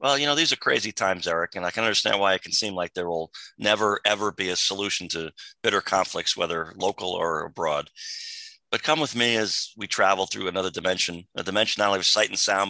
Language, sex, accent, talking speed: English, male, American, 230 wpm